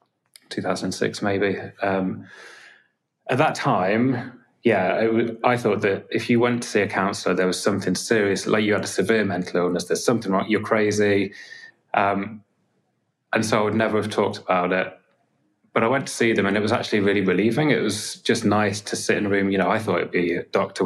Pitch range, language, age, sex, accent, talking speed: 95-110 Hz, English, 20-39, male, British, 215 wpm